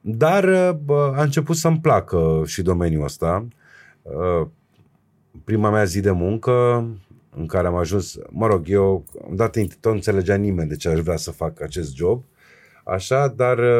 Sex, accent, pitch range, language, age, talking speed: male, native, 85-125 Hz, Romanian, 30-49, 145 wpm